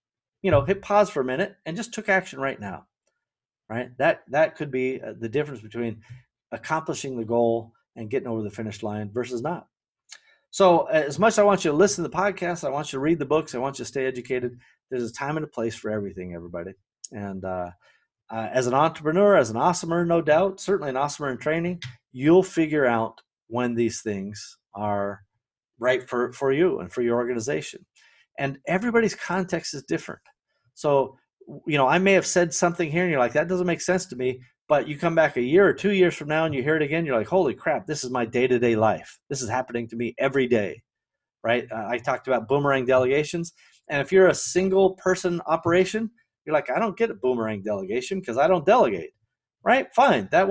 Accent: American